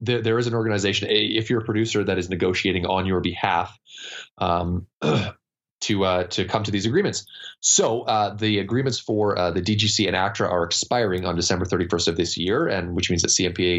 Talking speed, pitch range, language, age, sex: 195 wpm, 90-105 Hz, English, 20-39, male